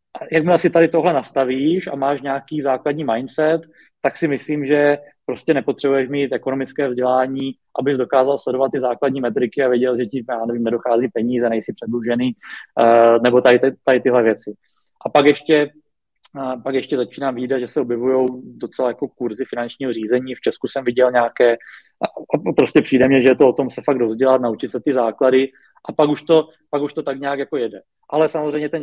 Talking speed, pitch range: 185 wpm, 125-145 Hz